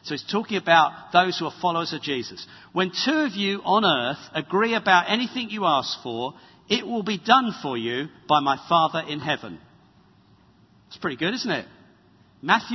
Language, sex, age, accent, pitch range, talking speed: English, male, 50-69, British, 165-225 Hz, 185 wpm